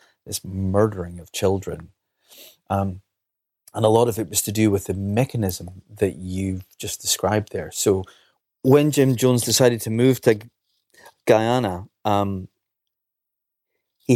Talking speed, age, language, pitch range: 135 wpm, 30-49, English, 100-120 Hz